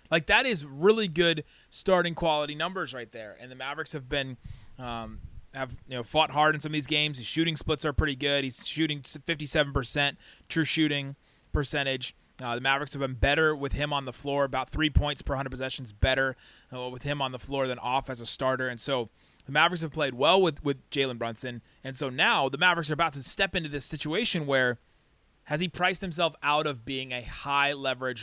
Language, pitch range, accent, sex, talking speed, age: English, 130-160 Hz, American, male, 215 wpm, 20-39